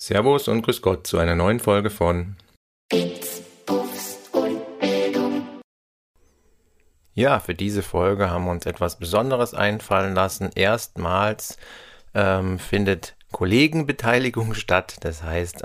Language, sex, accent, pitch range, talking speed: German, male, German, 90-110 Hz, 105 wpm